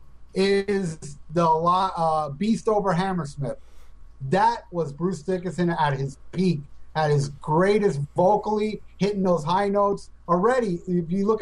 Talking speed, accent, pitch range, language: 130 wpm, American, 155-195 Hz, English